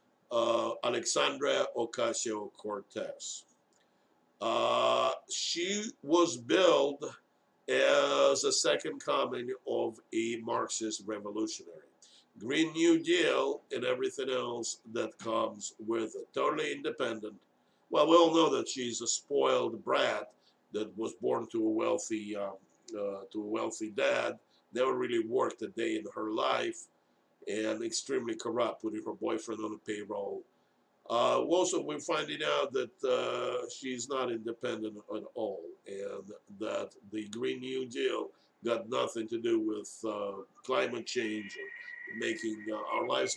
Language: English